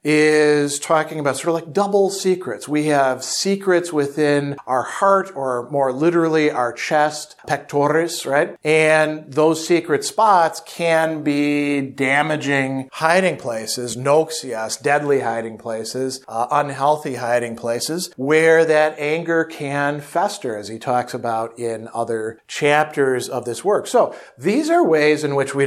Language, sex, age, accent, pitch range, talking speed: English, male, 50-69, American, 130-165 Hz, 140 wpm